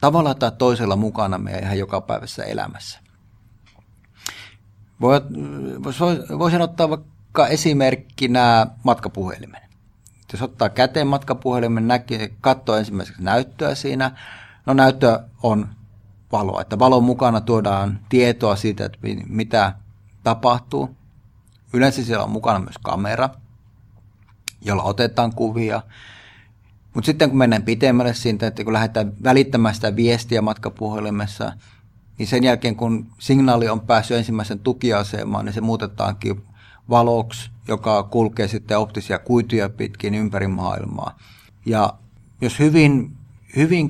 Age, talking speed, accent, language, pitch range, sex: 30-49, 120 wpm, native, Finnish, 105-125 Hz, male